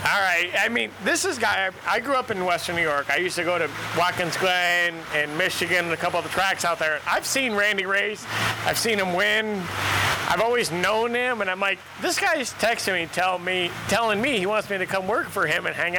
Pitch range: 155-195 Hz